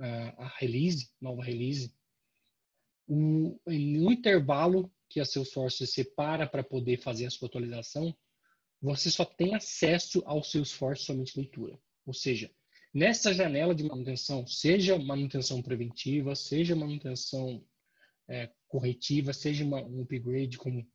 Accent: Brazilian